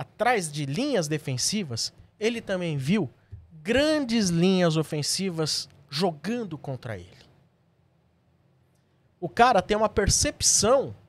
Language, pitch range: Portuguese, 145-200 Hz